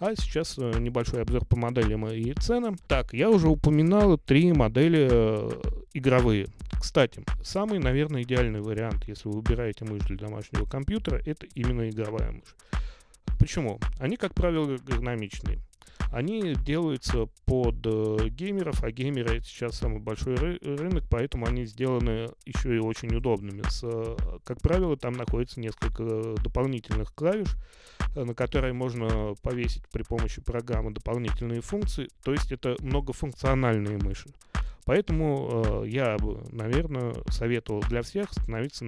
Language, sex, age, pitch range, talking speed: Russian, male, 30-49, 110-135 Hz, 125 wpm